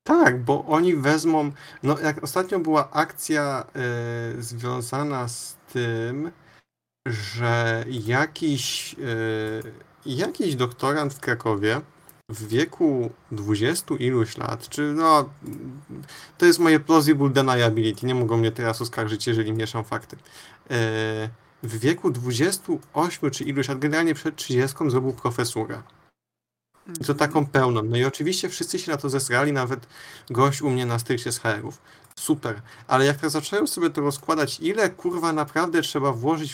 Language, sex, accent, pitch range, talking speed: Polish, male, native, 115-155 Hz, 135 wpm